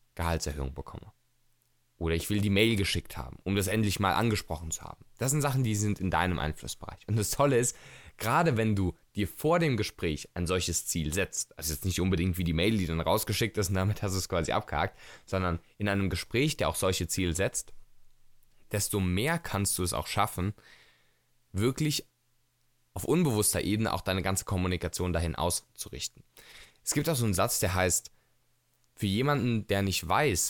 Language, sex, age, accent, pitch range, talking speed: German, male, 20-39, German, 90-125 Hz, 190 wpm